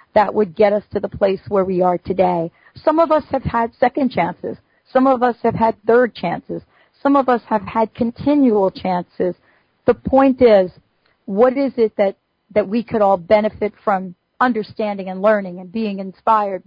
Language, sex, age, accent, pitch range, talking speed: English, female, 40-59, American, 190-230 Hz, 185 wpm